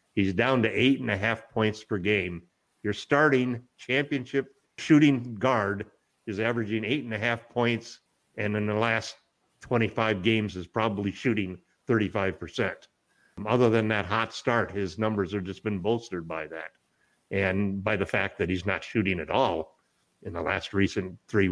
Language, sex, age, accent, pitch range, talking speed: English, male, 50-69, American, 95-115 Hz, 165 wpm